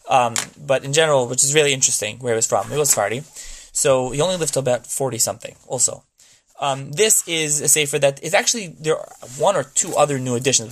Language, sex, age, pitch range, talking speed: English, male, 20-39, 125-155 Hz, 220 wpm